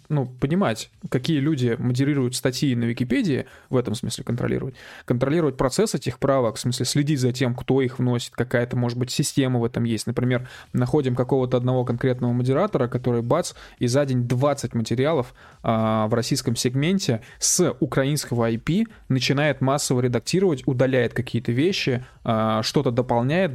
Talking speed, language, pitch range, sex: 150 wpm, Russian, 120-145 Hz, male